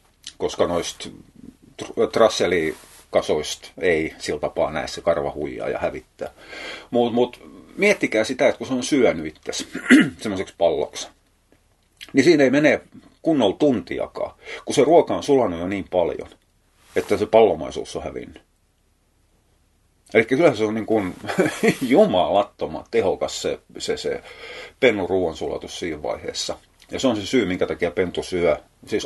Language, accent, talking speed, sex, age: Finnish, native, 135 wpm, male, 30-49